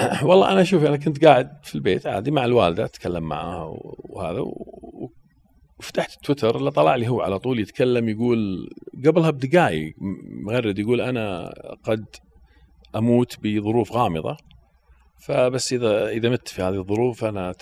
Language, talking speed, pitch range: Arabic, 140 wpm, 85-140 Hz